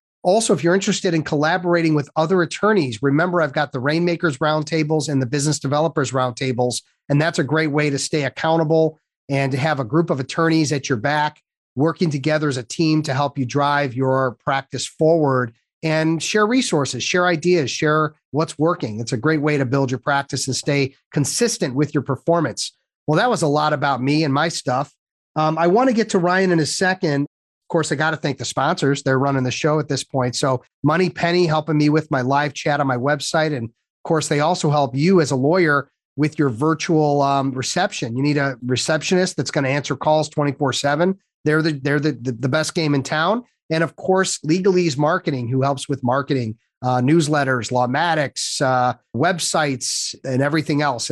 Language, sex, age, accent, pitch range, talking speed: English, male, 40-59, American, 135-160 Hz, 200 wpm